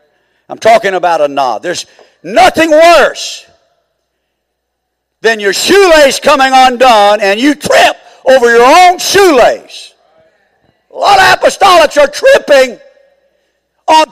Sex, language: male, English